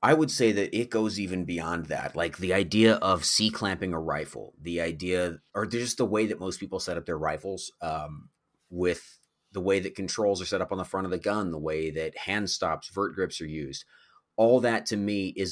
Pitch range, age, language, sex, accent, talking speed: 85-105 Hz, 30-49, English, male, American, 225 wpm